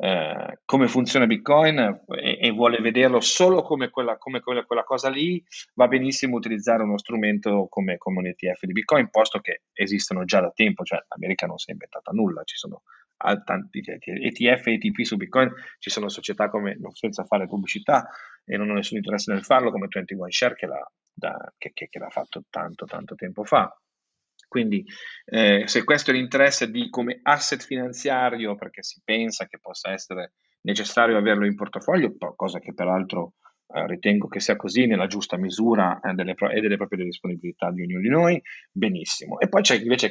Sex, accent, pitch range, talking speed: male, native, 100-125 Hz, 185 wpm